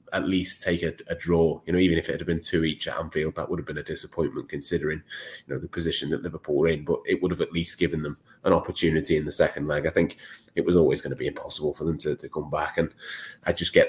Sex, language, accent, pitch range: male, English, British, 80-90 Hz